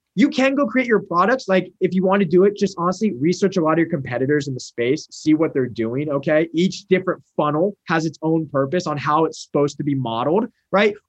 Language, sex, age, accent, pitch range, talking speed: English, male, 20-39, American, 150-210 Hz, 240 wpm